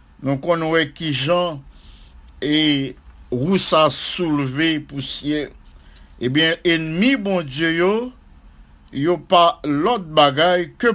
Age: 50-69